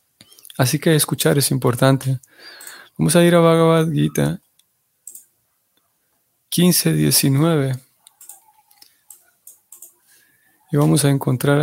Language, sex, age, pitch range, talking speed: Spanish, male, 30-49, 125-150 Hz, 85 wpm